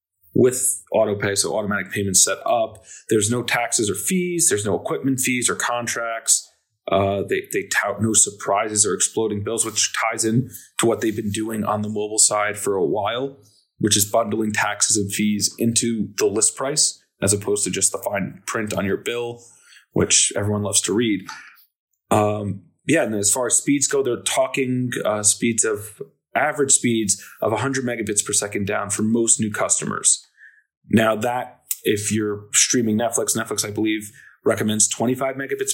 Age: 30-49